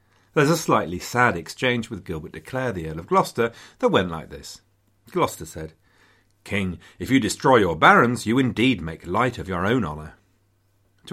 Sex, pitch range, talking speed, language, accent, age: male, 90-110 Hz, 185 wpm, English, British, 40-59